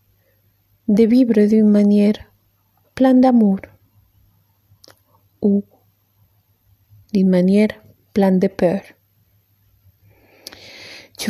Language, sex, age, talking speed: Spanish, female, 30-49, 75 wpm